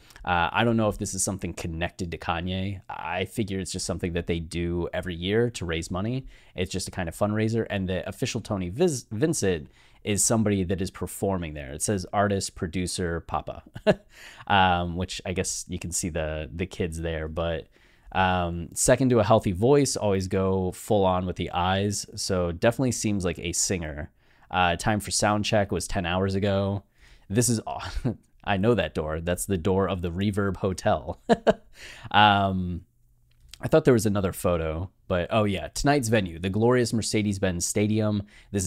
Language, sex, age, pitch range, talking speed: English, male, 20-39, 90-110 Hz, 185 wpm